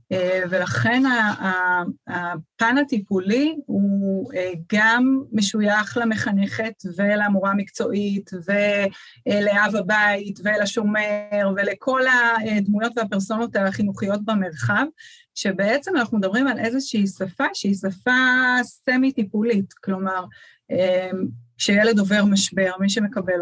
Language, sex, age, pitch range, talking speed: Hebrew, female, 30-49, 185-220 Hz, 80 wpm